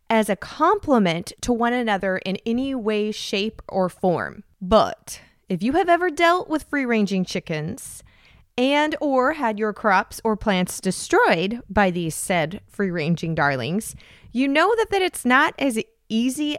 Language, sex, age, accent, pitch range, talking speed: English, female, 20-39, American, 200-270 Hz, 150 wpm